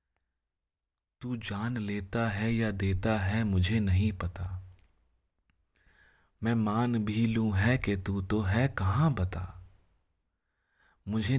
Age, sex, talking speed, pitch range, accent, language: 30-49, male, 115 wpm, 90-110 Hz, native, Hindi